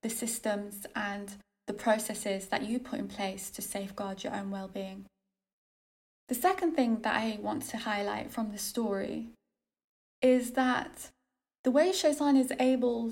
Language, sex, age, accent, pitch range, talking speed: English, female, 10-29, British, 210-255 Hz, 150 wpm